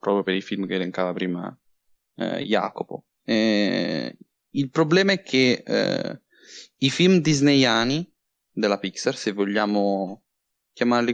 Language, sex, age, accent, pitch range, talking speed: Italian, male, 20-39, native, 110-145 Hz, 125 wpm